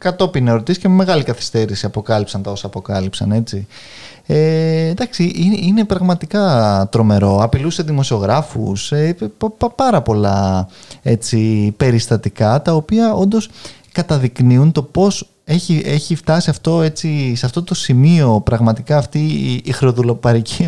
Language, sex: Greek, male